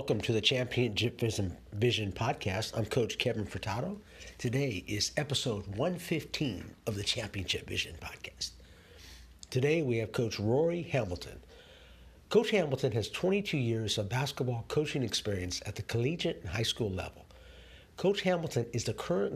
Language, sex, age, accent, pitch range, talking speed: English, male, 50-69, American, 105-145 Hz, 145 wpm